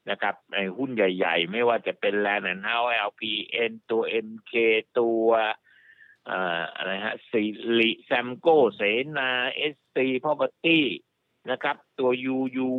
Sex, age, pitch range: male, 60-79, 110-135 Hz